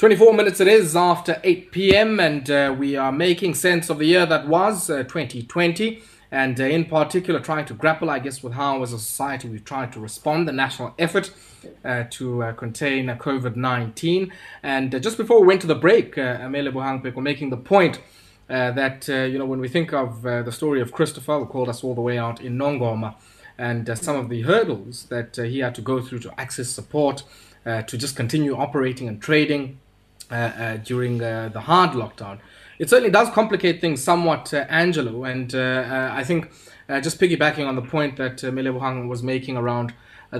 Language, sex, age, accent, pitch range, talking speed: English, male, 20-39, South African, 125-160 Hz, 210 wpm